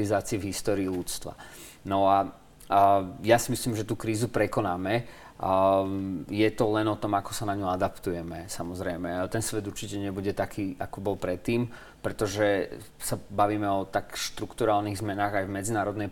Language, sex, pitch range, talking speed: Slovak, male, 95-110 Hz, 165 wpm